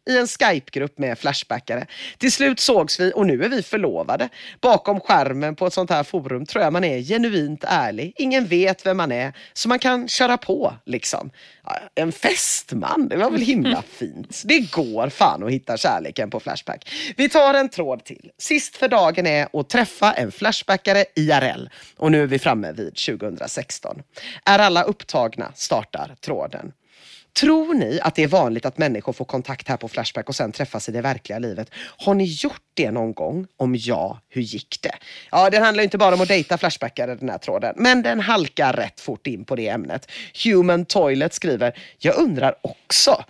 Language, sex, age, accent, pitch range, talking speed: Swedish, female, 40-59, native, 140-215 Hz, 190 wpm